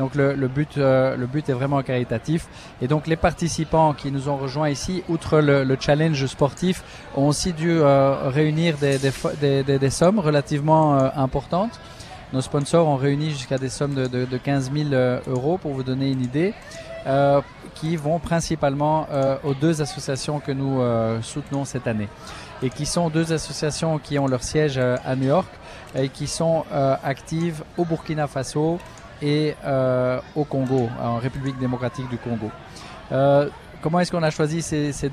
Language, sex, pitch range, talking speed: French, male, 130-155 Hz, 175 wpm